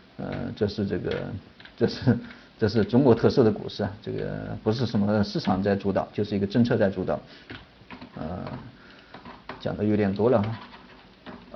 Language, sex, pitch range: Chinese, male, 105-130 Hz